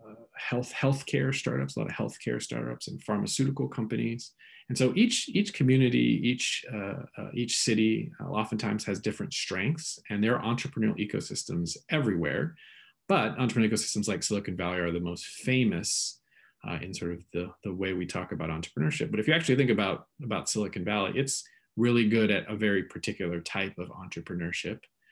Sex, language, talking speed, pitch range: male, English, 170 wpm, 90-115 Hz